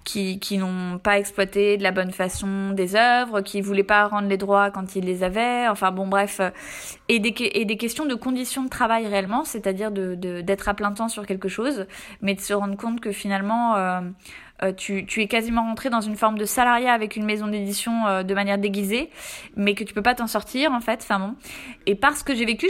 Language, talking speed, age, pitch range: French, 225 wpm, 20-39, 200-245 Hz